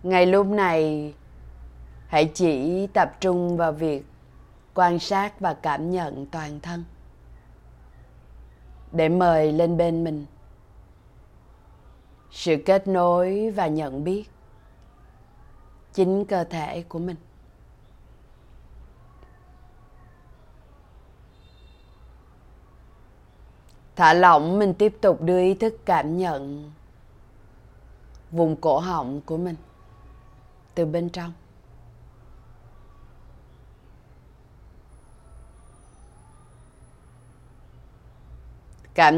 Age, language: 20-39, Vietnamese